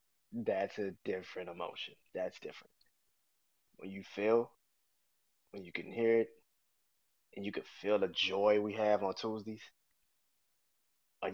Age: 20-39